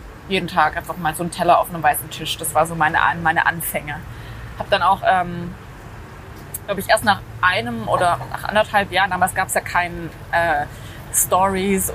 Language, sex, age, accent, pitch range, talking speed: German, female, 20-39, German, 165-210 Hz, 190 wpm